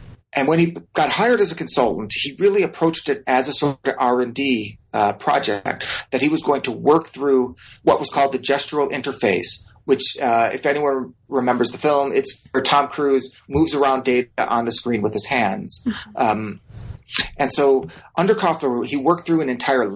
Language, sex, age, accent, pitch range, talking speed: English, male, 30-49, American, 125-155 Hz, 185 wpm